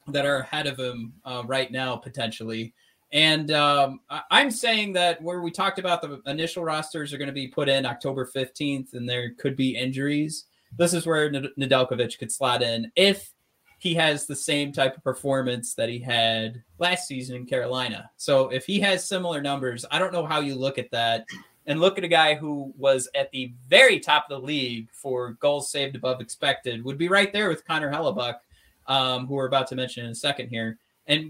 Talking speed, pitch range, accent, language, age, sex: 205 wpm, 125-165 Hz, American, English, 20-39, male